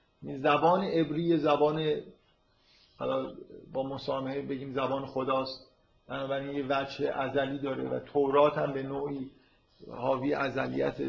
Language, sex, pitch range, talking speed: Persian, male, 130-150 Hz, 115 wpm